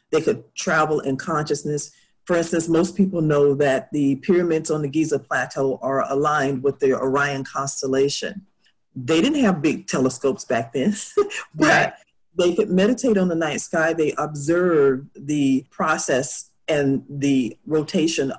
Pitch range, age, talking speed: 135-160 Hz, 40-59, 145 wpm